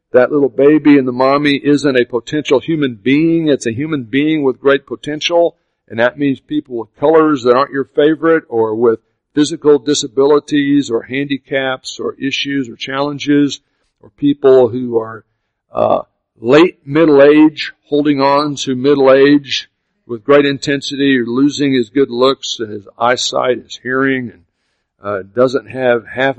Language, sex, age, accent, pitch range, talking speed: English, male, 60-79, American, 125-145 Hz, 155 wpm